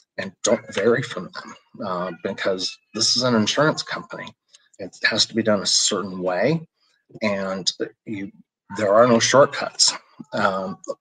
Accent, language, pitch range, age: American, English, 95-115 Hz, 30-49